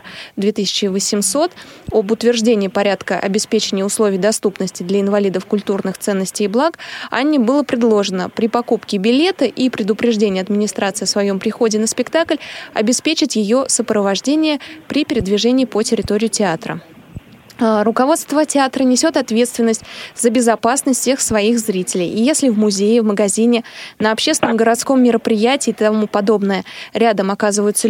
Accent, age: native, 20-39